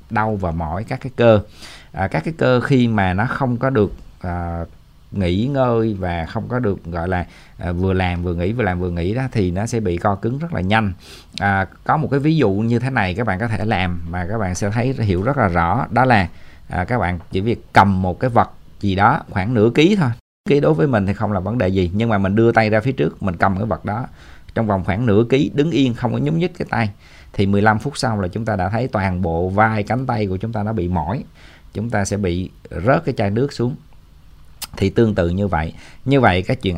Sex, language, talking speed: male, Vietnamese, 260 wpm